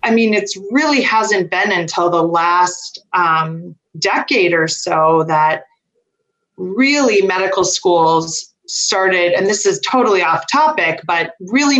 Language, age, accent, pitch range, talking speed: English, 30-49, American, 175-215 Hz, 130 wpm